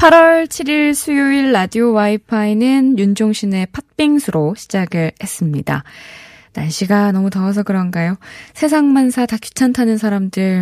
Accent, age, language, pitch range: native, 20-39, Korean, 170-245 Hz